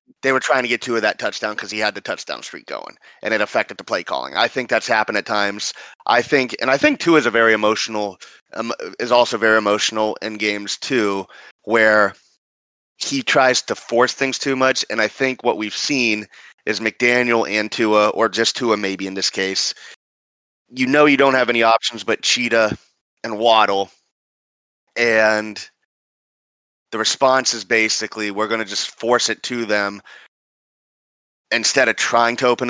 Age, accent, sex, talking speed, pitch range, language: 30-49, American, male, 185 wpm, 105-120 Hz, English